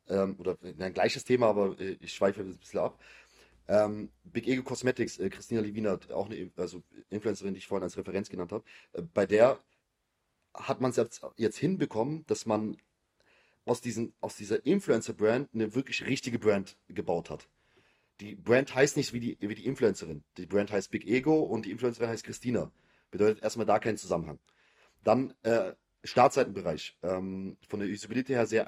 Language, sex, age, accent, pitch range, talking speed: German, male, 30-49, German, 100-125 Hz, 170 wpm